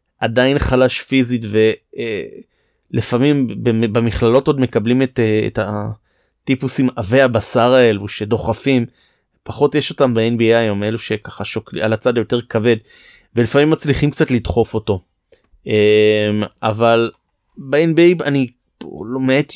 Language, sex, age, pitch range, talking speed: Hebrew, male, 30-49, 110-135 Hz, 115 wpm